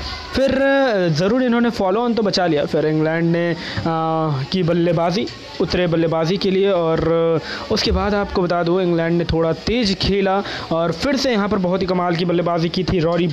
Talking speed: 190 wpm